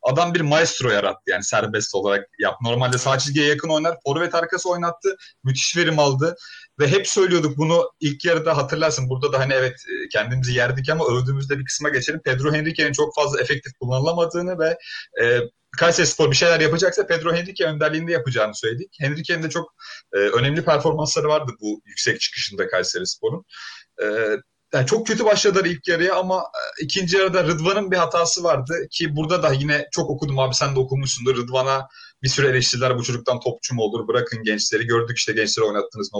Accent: native